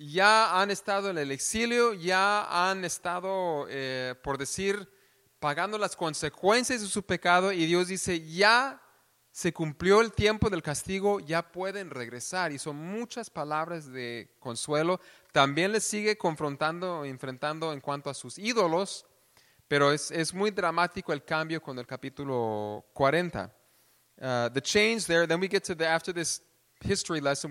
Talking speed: 155 wpm